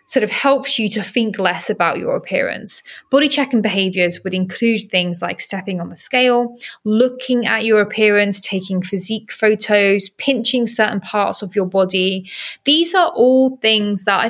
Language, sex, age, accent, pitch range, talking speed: English, female, 20-39, British, 185-240 Hz, 170 wpm